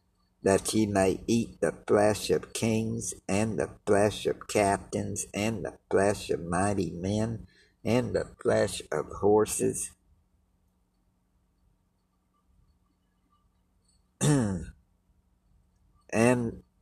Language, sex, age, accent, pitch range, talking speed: English, male, 60-79, American, 90-110 Hz, 90 wpm